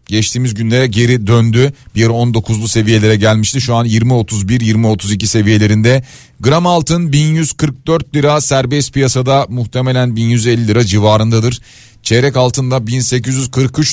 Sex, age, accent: male, 40-59, native